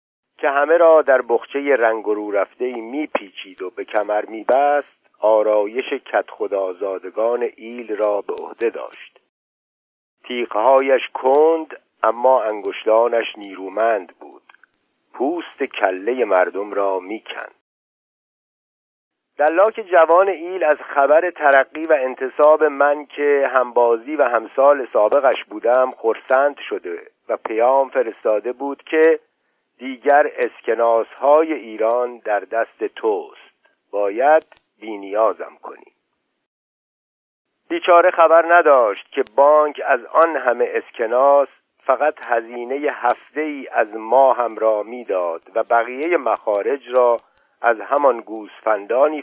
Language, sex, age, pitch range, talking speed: Persian, male, 50-69, 115-160 Hz, 110 wpm